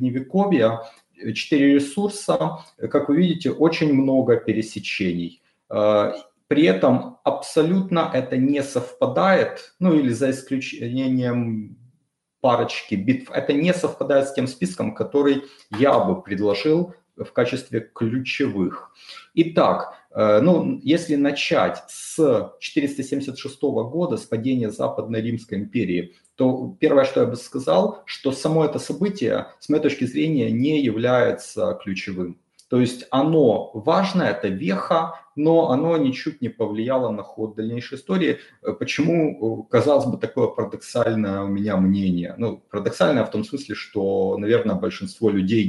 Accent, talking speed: native, 125 wpm